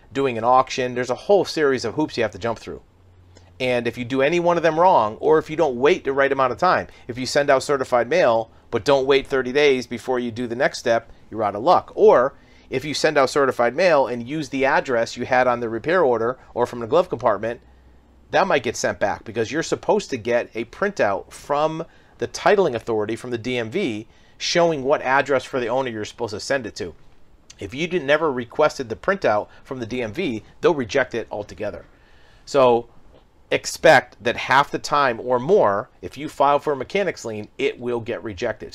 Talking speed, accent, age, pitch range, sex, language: 215 wpm, American, 40-59, 115-140 Hz, male, English